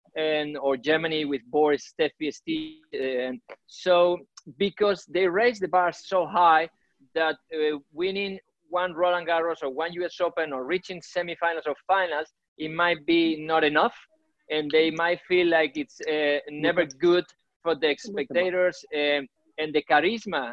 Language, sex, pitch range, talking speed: English, male, 155-195 Hz, 150 wpm